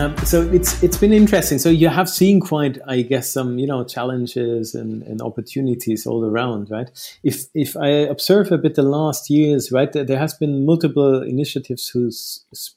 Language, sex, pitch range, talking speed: English, male, 130-160 Hz, 185 wpm